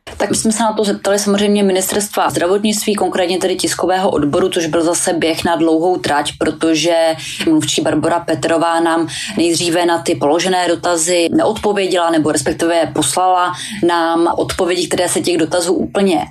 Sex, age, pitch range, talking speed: female, 20-39, 165-185 Hz, 155 wpm